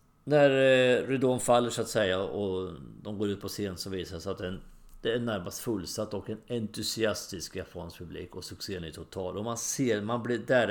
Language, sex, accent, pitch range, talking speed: English, male, Swedish, 90-115 Hz, 195 wpm